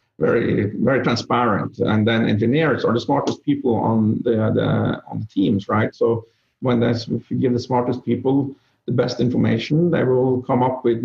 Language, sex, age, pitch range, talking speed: English, male, 50-69, 110-125 Hz, 175 wpm